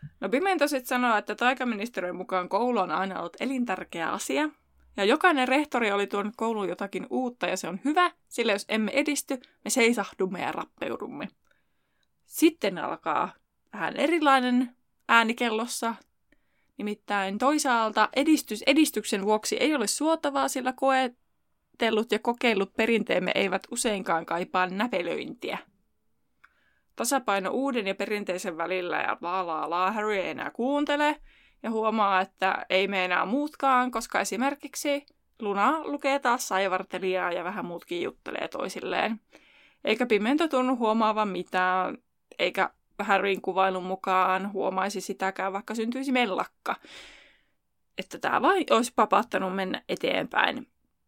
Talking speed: 125 wpm